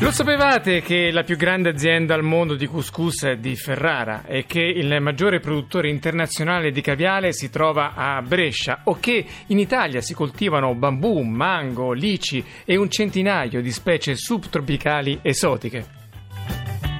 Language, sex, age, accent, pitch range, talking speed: Italian, male, 40-59, native, 125-170 Hz, 150 wpm